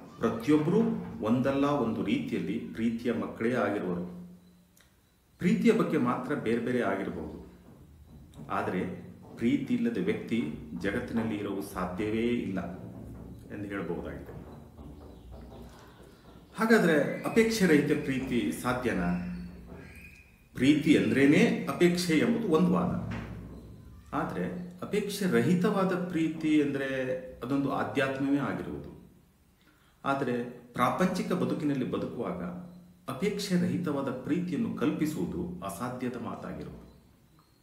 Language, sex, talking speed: Kannada, male, 85 wpm